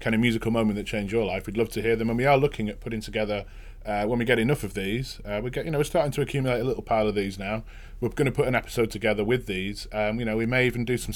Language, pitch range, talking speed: English, 100-120 Hz, 315 wpm